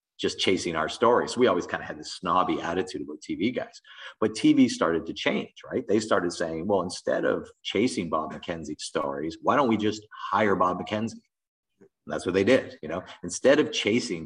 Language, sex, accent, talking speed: English, male, American, 205 wpm